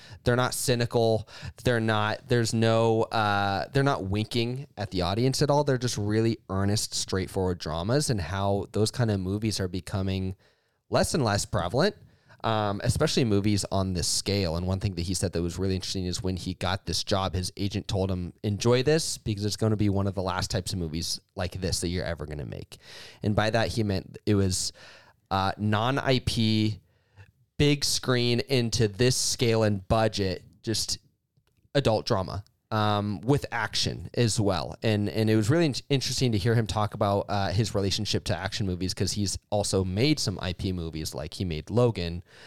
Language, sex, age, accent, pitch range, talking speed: English, male, 20-39, American, 95-120 Hz, 190 wpm